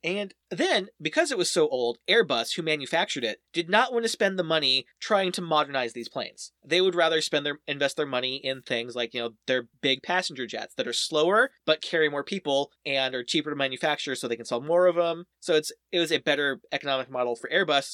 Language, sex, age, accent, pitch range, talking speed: English, male, 30-49, American, 135-195 Hz, 230 wpm